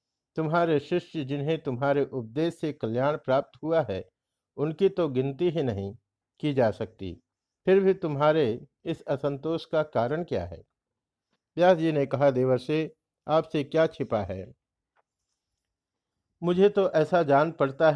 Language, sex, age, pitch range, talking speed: Hindi, male, 50-69, 120-160 Hz, 135 wpm